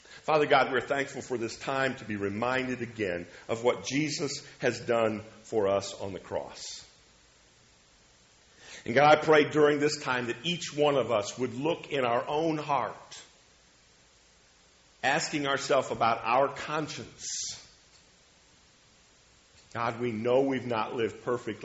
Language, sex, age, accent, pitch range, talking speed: English, male, 50-69, American, 100-140 Hz, 140 wpm